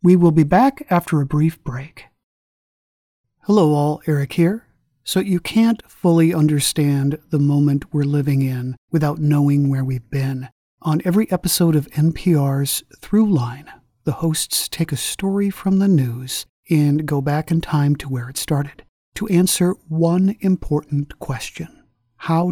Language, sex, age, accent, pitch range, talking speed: English, male, 40-59, American, 145-170 Hz, 150 wpm